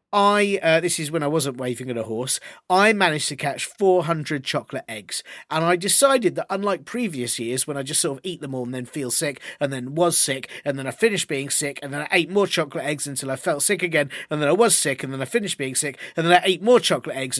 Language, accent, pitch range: English, British, 140-225 Hz